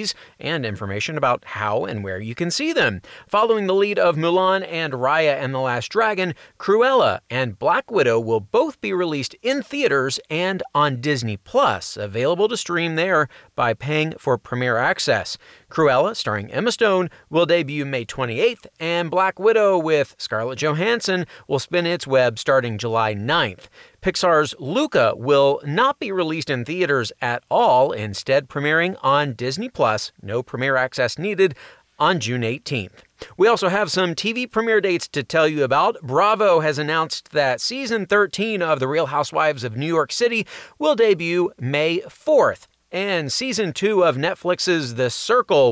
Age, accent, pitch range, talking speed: 40-59, American, 135-190 Hz, 160 wpm